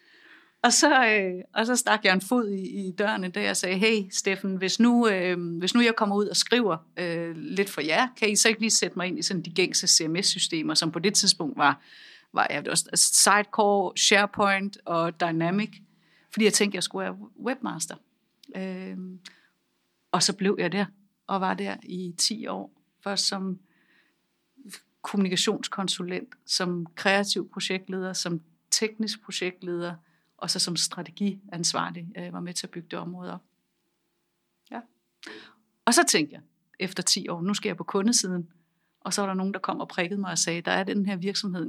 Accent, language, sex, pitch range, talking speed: native, Danish, female, 175-205 Hz, 185 wpm